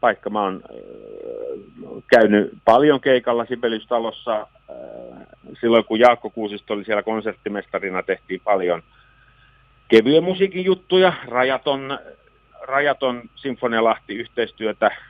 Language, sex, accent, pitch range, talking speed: Finnish, male, native, 105-135 Hz, 90 wpm